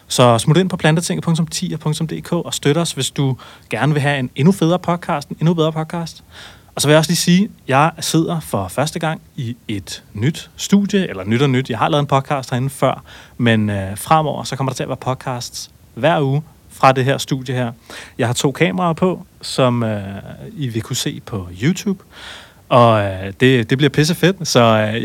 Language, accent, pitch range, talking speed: Danish, native, 125-160 Hz, 210 wpm